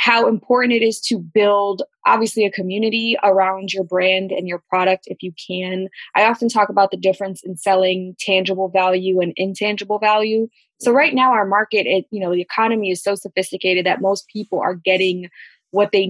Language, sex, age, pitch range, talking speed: English, female, 20-39, 185-215 Hz, 190 wpm